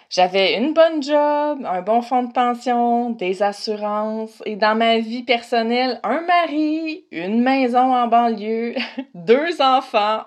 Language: French